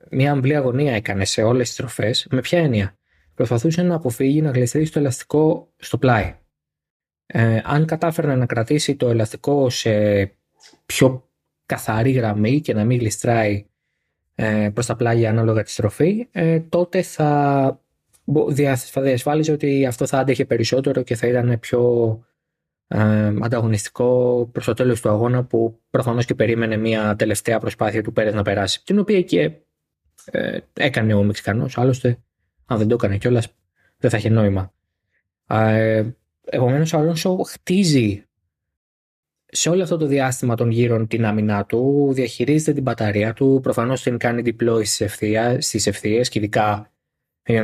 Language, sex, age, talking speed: Greek, male, 20-39, 145 wpm